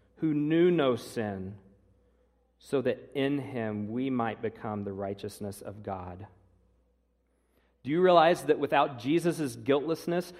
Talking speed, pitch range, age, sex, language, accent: 125 wpm, 100-150 Hz, 40-59, male, English, American